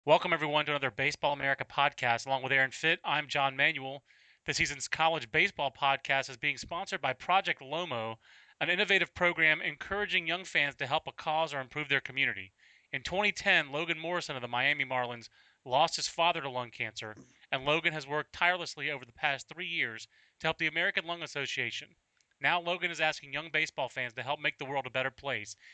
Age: 30-49